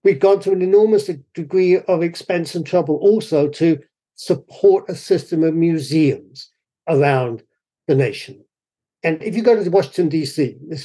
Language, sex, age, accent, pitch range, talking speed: English, male, 50-69, British, 140-205 Hz, 155 wpm